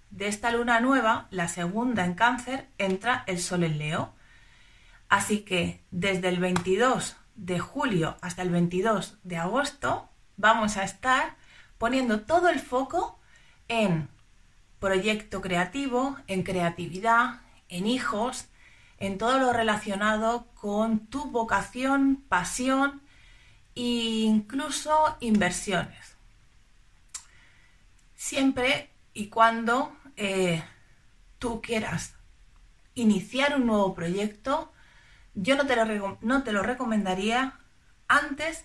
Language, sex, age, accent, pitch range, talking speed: Spanish, female, 30-49, Spanish, 185-255 Hz, 105 wpm